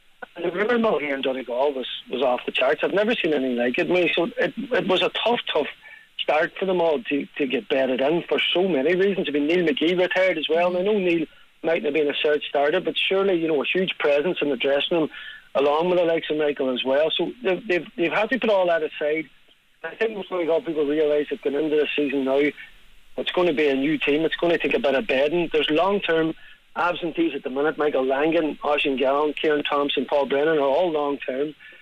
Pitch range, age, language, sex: 145-180 Hz, 40-59, English, male